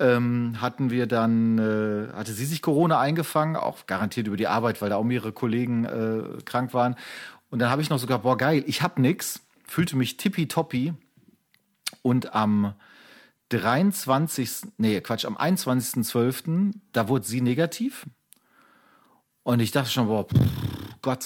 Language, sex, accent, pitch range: German, male, German, 115-155 Hz